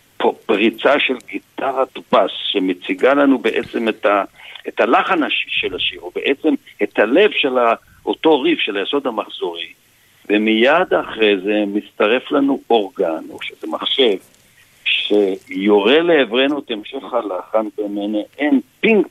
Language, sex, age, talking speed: Hebrew, male, 60-79, 130 wpm